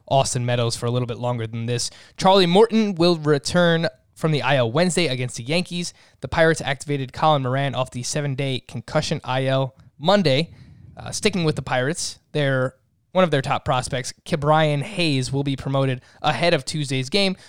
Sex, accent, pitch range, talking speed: male, American, 125-160 Hz, 175 wpm